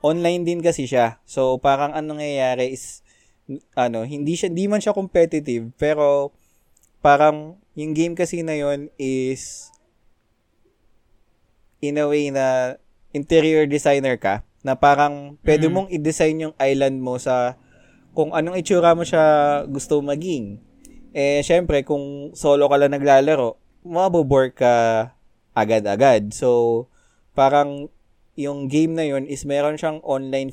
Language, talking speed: Filipino, 130 wpm